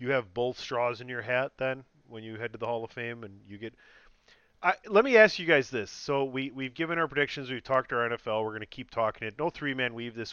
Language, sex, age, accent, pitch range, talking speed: English, male, 30-49, American, 110-130 Hz, 275 wpm